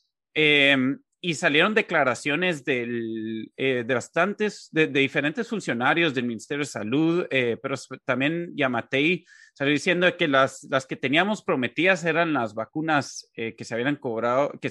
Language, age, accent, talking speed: Spanish, 30-49, Mexican, 150 wpm